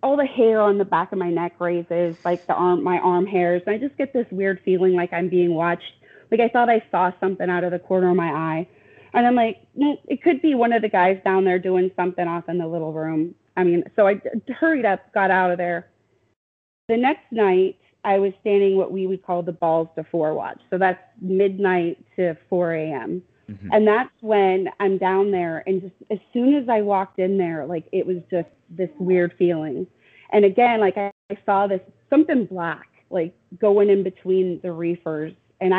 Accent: American